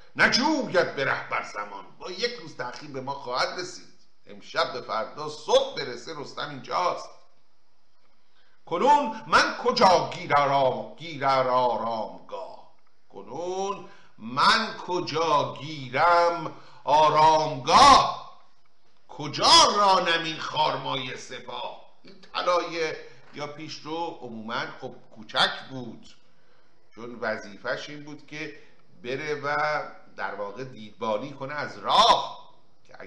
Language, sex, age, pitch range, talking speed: Persian, male, 50-69, 125-170 Hz, 100 wpm